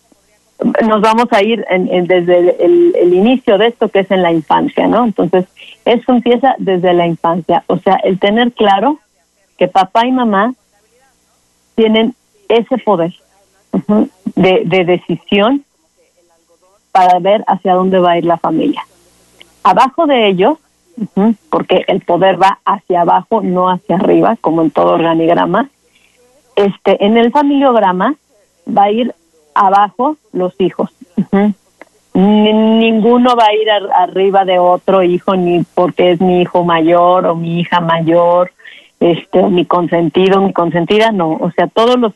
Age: 40-59